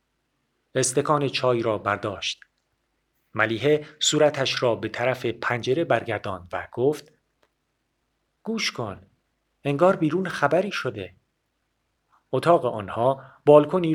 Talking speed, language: 95 wpm, Persian